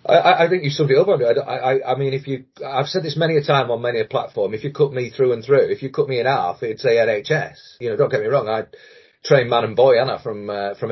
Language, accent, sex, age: English, British, male, 40-59